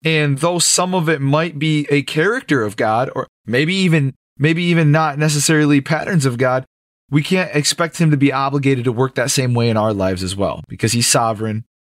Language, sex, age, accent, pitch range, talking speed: English, male, 20-39, American, 130-160 Hz, 205 wpm